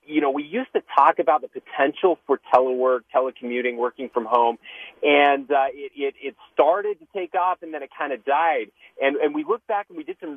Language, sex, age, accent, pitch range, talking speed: English, male, 30-49, American, 125-190 Hz, 225 wpm